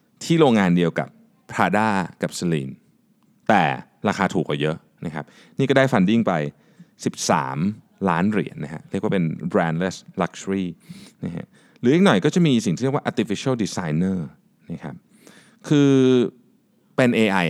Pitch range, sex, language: 105-180 Hz, male, Thai